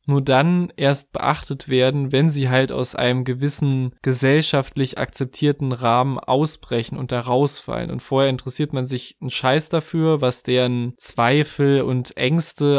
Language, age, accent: German, 20-39, German